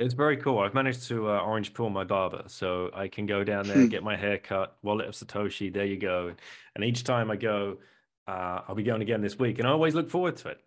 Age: 30-49